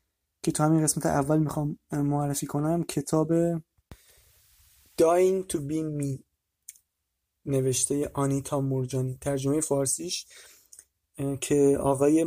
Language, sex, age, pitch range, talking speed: Persian, male, 30-49, 140-160 Hz, 95 wpm